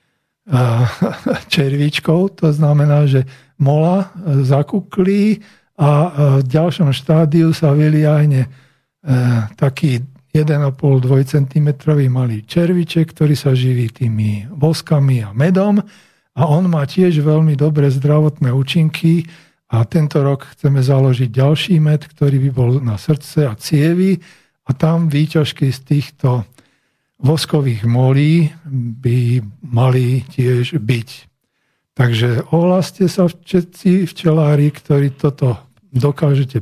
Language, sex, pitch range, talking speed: Slovak, male, 130-160 Hz, 105 wpm